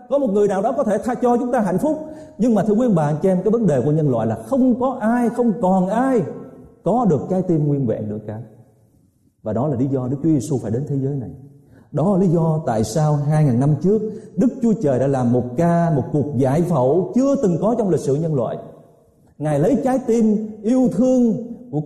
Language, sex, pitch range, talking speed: Vietnamese, male, 130-210 Hz, 245 wpm